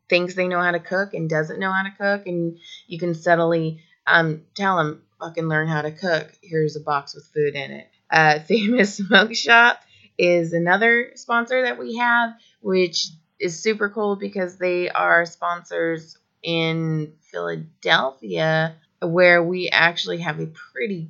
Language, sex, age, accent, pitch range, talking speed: English, female, 30-49, American, 155-190 Hz, 160 wpm